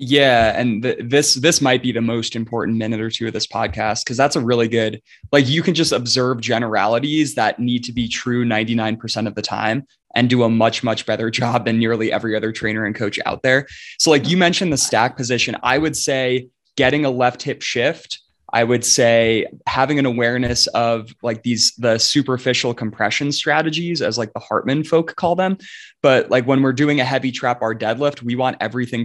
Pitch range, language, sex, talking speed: 115-135 Hz, English, male, 205 wpm